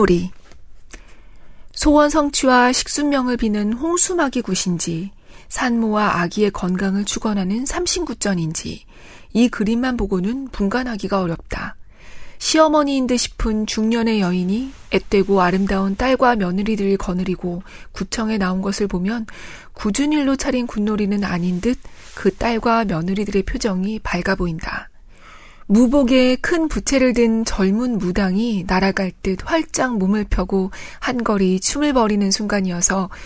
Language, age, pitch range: Korean, 40-59, 190-245 Hz